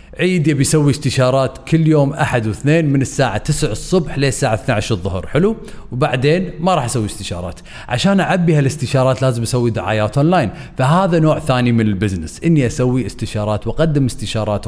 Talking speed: 155 wpm